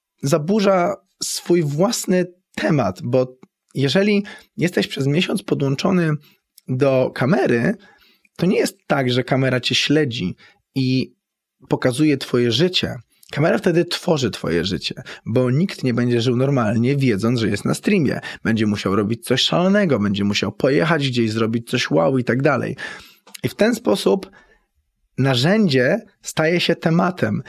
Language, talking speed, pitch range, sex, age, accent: Polish, 140 wpm, 120-165 Hz, male, 20-39, native